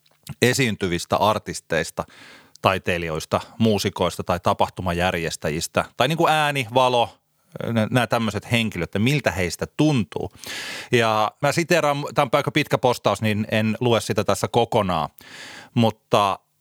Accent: native